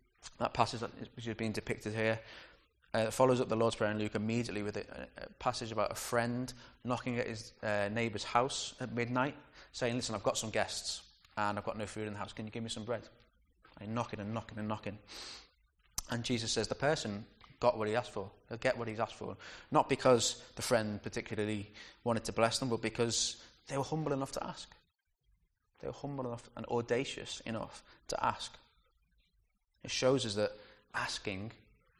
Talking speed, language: 195 wpm, English